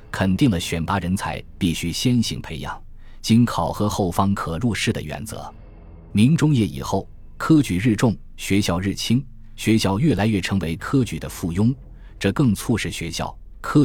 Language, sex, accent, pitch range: Chinese, male, native, 85-115 Hz